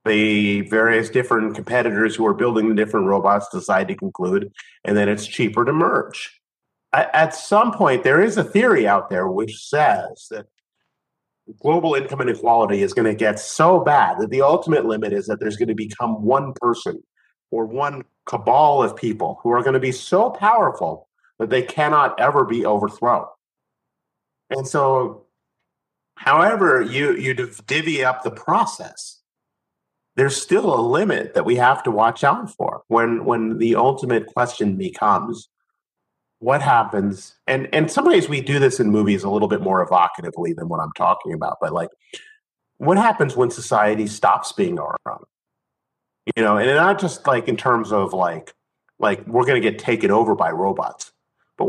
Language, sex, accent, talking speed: English, male, American, 170 wpm